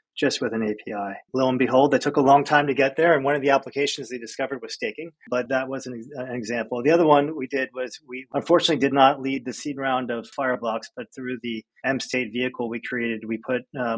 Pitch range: 115-130 Hz